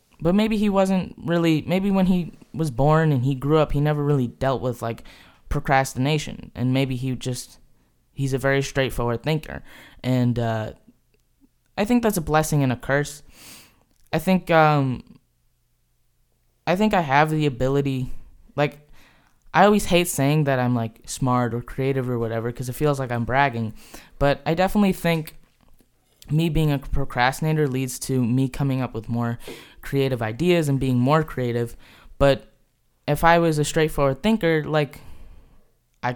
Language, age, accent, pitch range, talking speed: English, 10-29, American, 125-160 Hz, 160 wpm